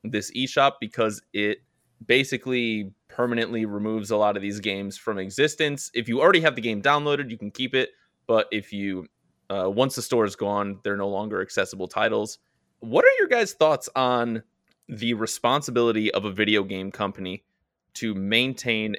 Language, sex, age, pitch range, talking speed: English, male, 20-39, 105-145 Hz, 170 wpm